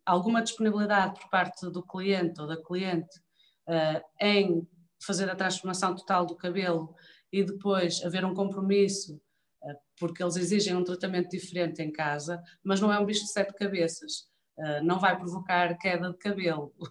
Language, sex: Portuguese, female